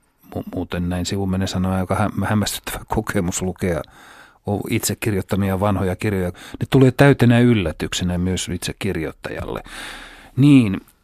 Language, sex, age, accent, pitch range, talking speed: Finnish, male, 40-59, native, 90-120 Hz, 115 wpm